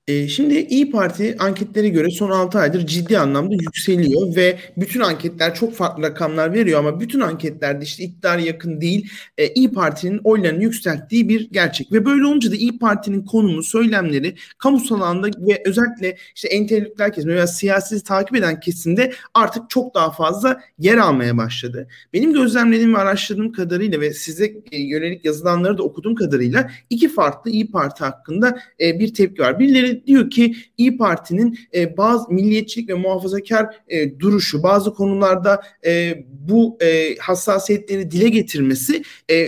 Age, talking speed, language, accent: 40-59, 150 wpm, Turkish, native